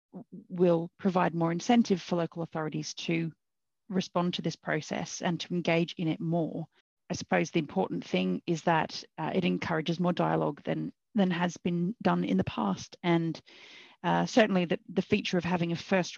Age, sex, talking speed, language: 40-59, female, 180 wpm, English